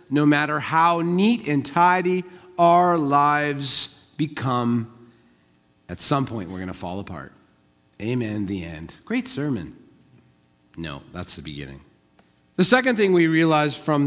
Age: 40-59